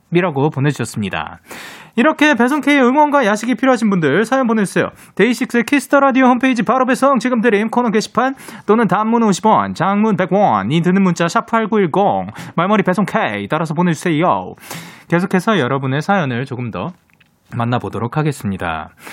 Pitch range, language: 150-230 Hz, Korean